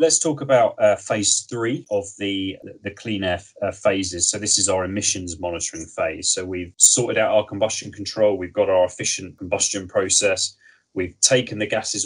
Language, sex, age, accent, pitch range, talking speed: English, male, 30-49, British, 95-115 Hz, 190 wpm